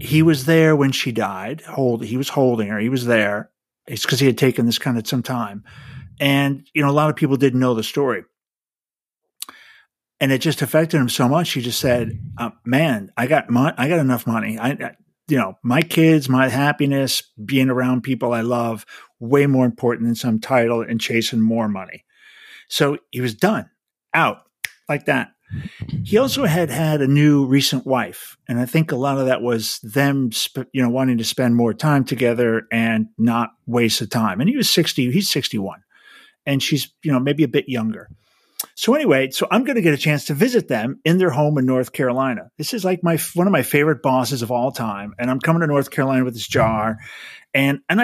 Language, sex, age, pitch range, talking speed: English, male, 50-69, 120-150 Hz, 210 wpm